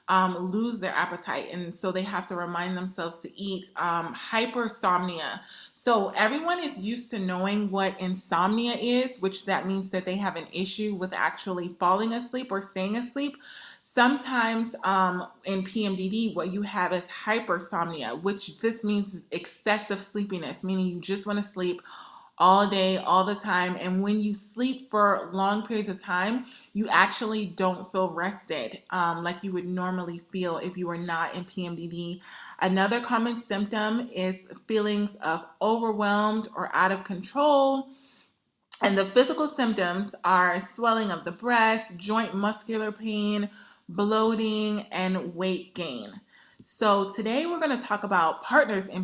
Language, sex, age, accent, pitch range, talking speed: English, female, 20-39, American, 180-215 Hz, 155 wpm